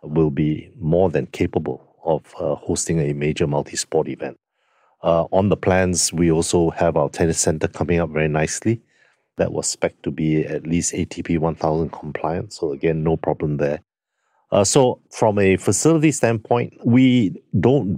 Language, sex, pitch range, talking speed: English, male, 80-95 Hz, 165 wpm